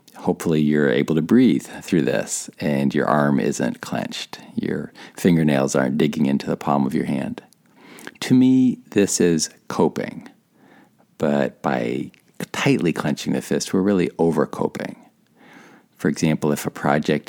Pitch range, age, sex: 80-115 Hz, 50-69, male